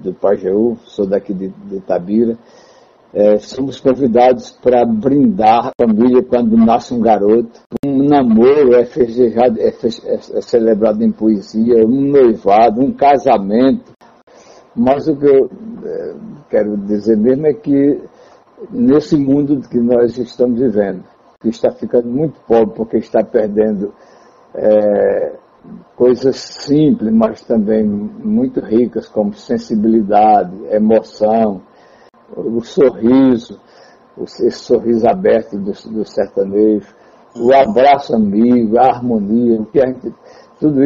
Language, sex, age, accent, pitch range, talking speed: Portuguese, male, 60-79, Brazilian, 110-140 Hz, 115 wpm